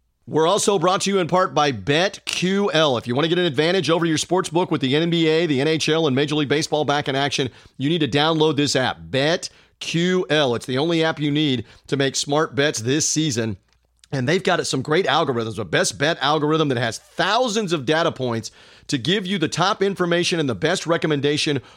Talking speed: 210 wpm